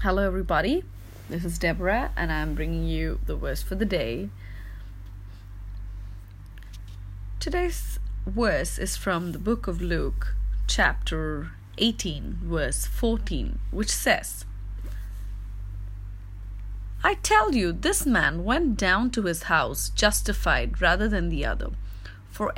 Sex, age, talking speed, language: female, 30-49, 120 wpm, English